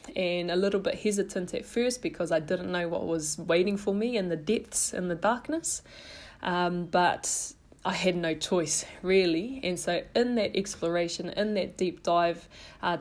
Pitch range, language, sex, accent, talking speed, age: 170-195 Hz, English, female, Australian, 180 wpm, 20-39